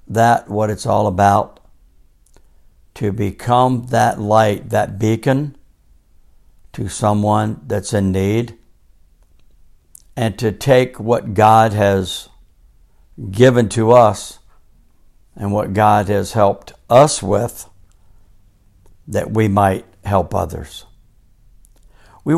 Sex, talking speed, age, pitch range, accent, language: male, 100 wpm, 60-79, 95-120 Hz, American, English